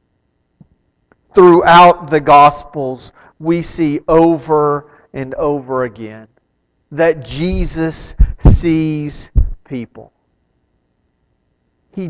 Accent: American